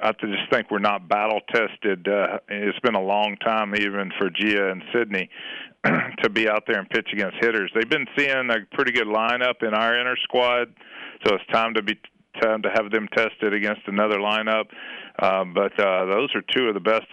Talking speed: 210 wpm